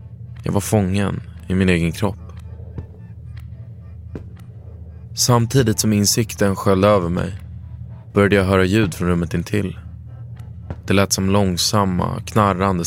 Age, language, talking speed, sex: 20-39, Swedish, 115 wpm, male